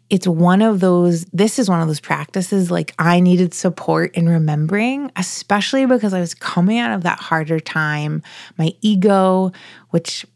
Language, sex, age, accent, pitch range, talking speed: English, female, 20-39, American, 165-190 Hz, 170 wpm